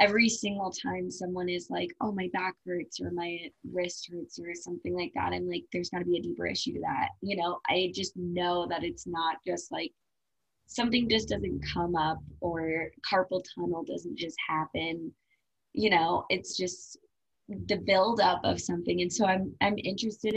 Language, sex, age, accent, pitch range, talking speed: English, female, 20-39, American, 170-210 Hz, 185 wpm